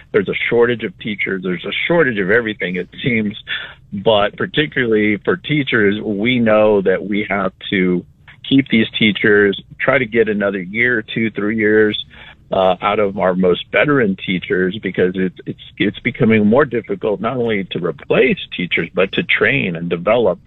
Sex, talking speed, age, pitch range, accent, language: male, 165 wpm, 50-69, 100-130 Hz, American, English